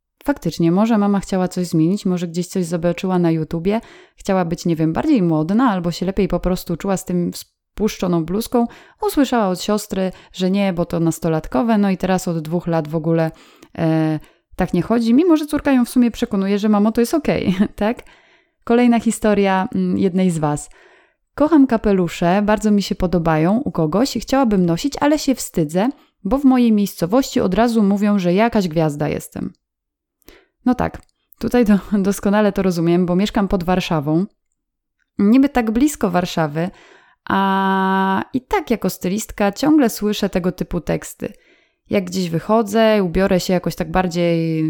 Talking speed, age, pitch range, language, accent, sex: 165 wpm, 20-39, 175-230 Hz, Polish, native, female